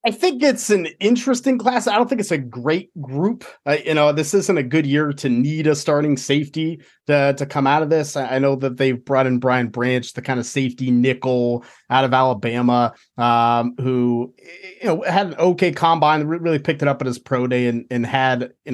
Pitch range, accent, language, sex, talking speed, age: 130-160 Hz, American, English, male, 220 wpm, 30-49